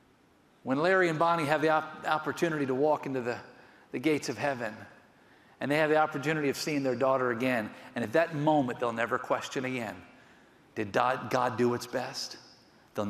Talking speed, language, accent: 185 wpm, English, American